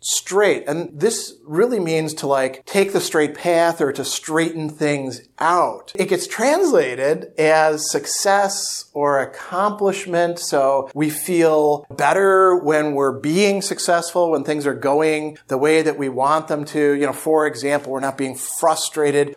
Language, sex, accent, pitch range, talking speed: English, male, American, 145-180 Hz, 155 wpm